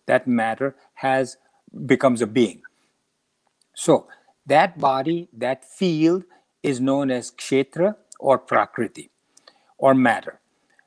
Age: 50-69